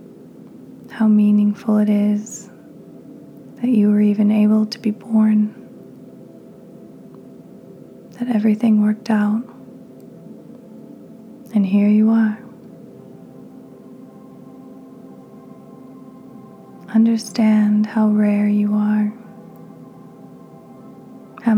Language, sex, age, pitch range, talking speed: English, female, 20-39, 210-235 Hz, 70 wpm